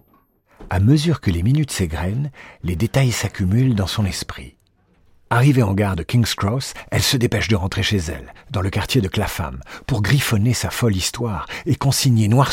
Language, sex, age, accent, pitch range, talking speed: French, male, 50-69, French, 90-125 Hz, 180 wpm